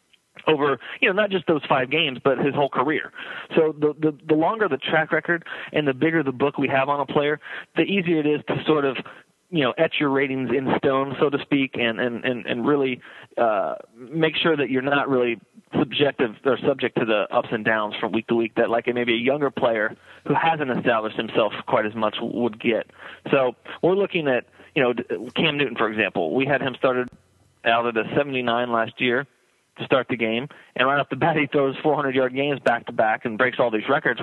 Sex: male